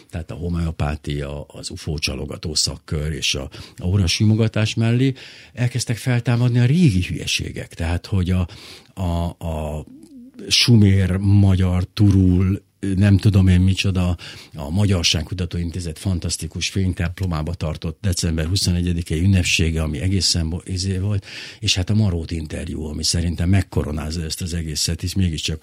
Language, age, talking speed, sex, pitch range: Hungarian, 60-79, 125 wpm, male, 85-105 Hz